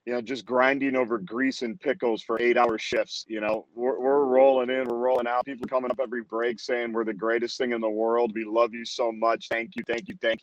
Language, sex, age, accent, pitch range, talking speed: English, male, 40-59, American, 115-135 Hz, 245 wpm